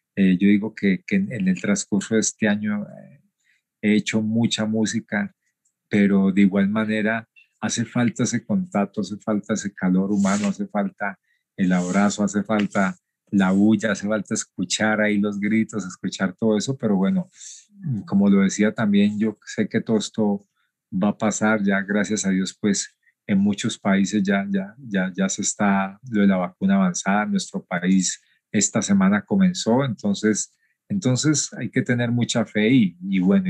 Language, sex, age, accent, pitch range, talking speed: Spanish, male, 40-59, Colombian, 100-135 Hz, 170 wpm